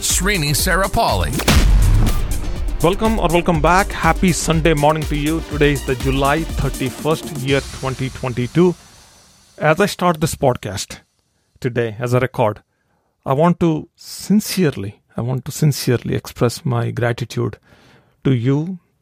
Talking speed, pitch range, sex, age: 130 wpm, 115-150 Hz, male, 40-59